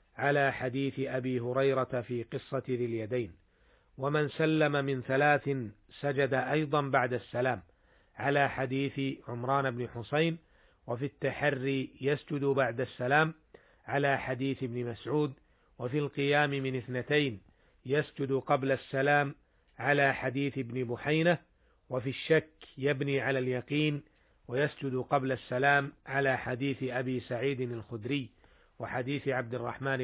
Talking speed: 115 wpm